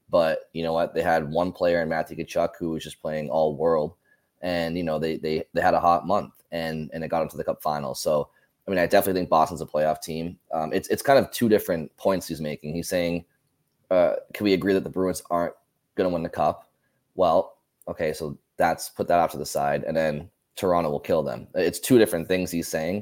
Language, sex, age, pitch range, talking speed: English, male, 20-39, 75-90 Hz, 240 wpm